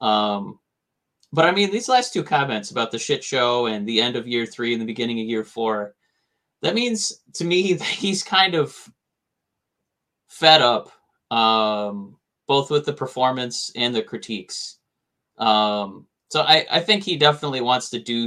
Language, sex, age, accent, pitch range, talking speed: English, male, 20-39, American, 110-150 Hz, 170 wpm